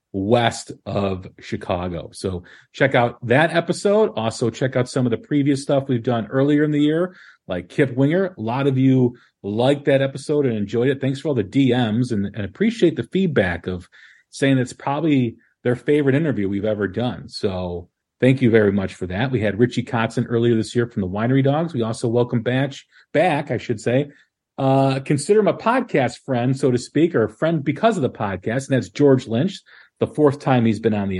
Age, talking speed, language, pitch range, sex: 40-59, 205 wpm, English, 110-140 Hz, male